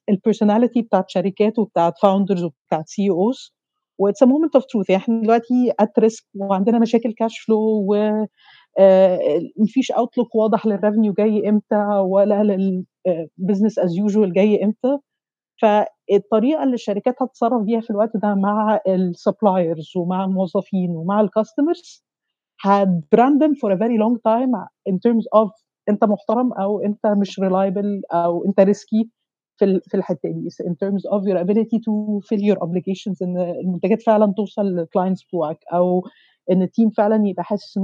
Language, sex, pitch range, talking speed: Arabic, female, 190-220 Hz, 140 wpm